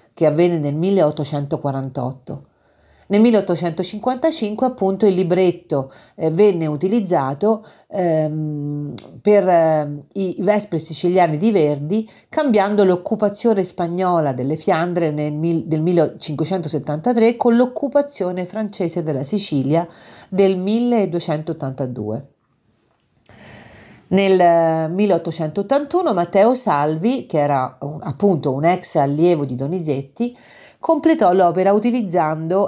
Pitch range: 150-205 Hz